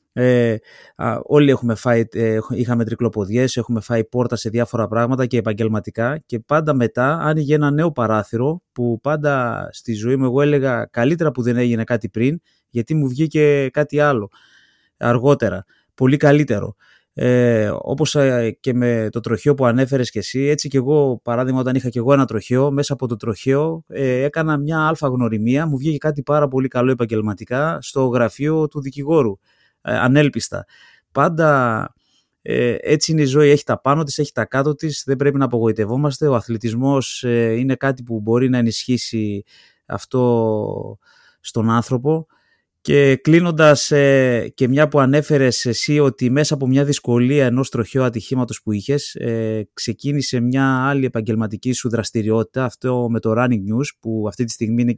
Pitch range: 115-145 Hz